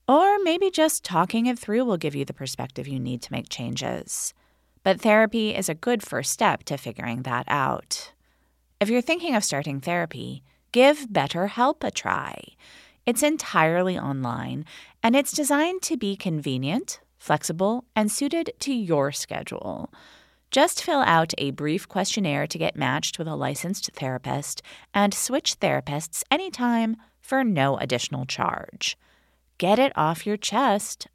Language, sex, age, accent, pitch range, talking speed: English, female, 30-49, American, 140-225 Hz, 150 wpm